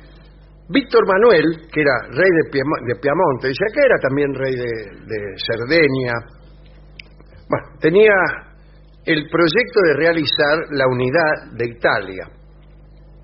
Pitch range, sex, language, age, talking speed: 140-170 Hz, male, English, 50-69, 115 wpm